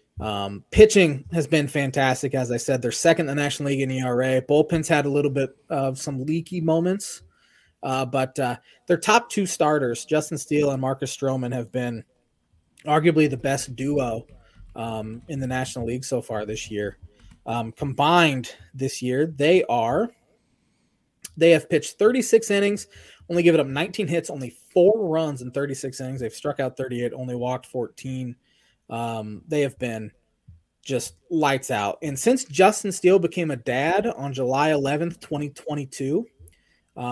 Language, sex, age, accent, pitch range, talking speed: English, male, 20-39, American, 120-160 Hz, 160 wpm